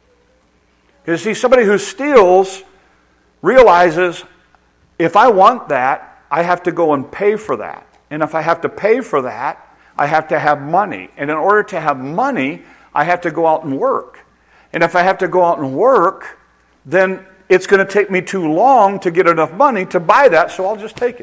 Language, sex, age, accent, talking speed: English, male, 60-79, American, 205 wpm